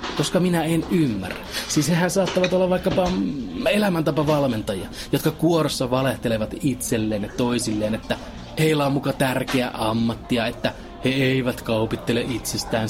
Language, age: Finnish, 30-49